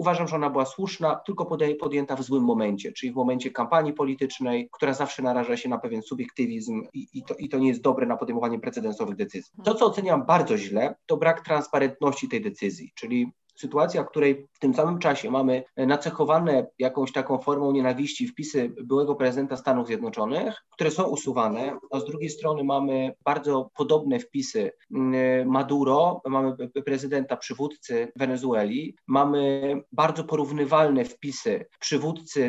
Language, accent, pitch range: Polish, native, 130-150 Hz